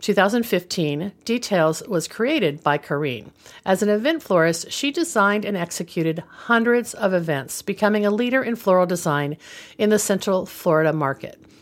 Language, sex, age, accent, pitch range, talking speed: English, female, 50-69, American, 160-220 Hz, 145 wpm